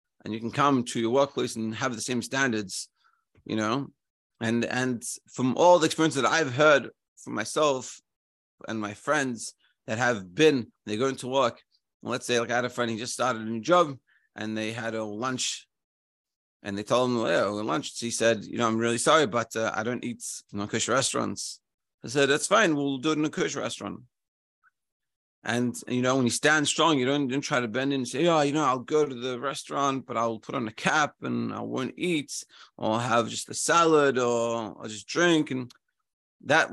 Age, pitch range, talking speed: 30-49, 115-155 Hz, 220 wpm